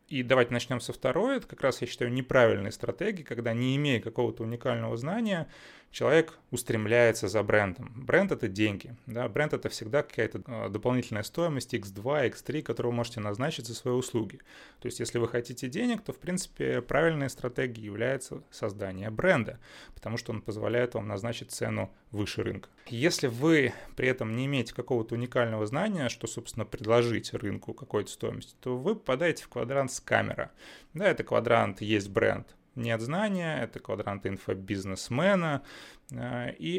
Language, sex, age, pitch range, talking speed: Russian, male, 30-49, 115-140 Hz, 160 wpm